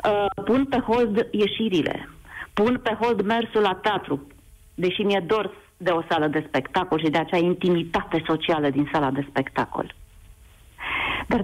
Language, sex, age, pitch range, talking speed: Romanian, female, 40-59, 205-275 Hz, 145 wpm